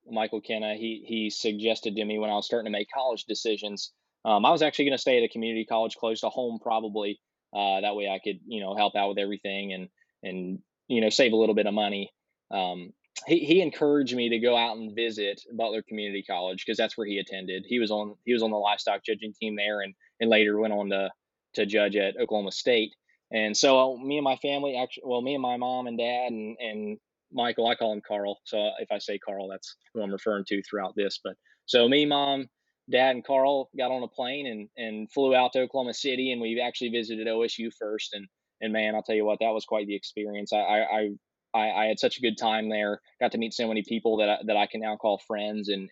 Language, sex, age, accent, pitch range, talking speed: English, male, 20-39, American, 105-120 Hz, 245 wpm